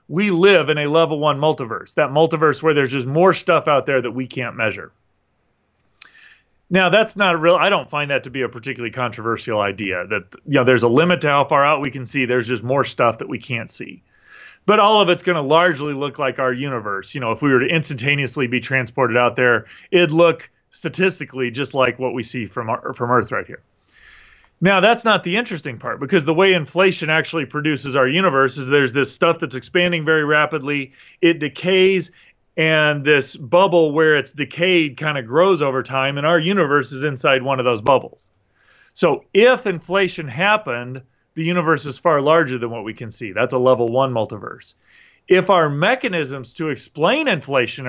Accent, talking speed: American, 200 wpm